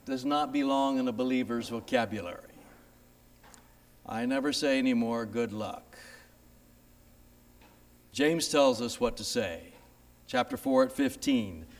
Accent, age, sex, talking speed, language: American, 60-79, male, 115 wpm, English